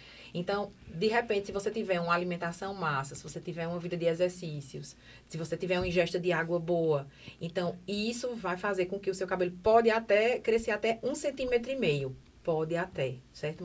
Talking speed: 195 wpm